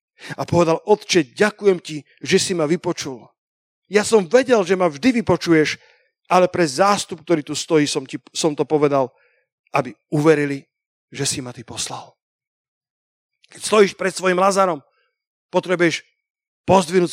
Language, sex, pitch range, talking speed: Slovak, male, 155-190 Hz, 145 wpm